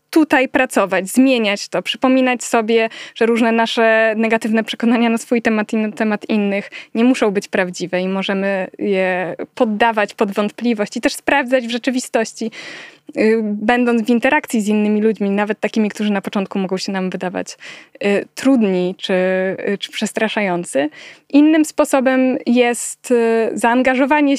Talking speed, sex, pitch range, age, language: 140 wpm, female, 220-280 Hz, 20-39, Polish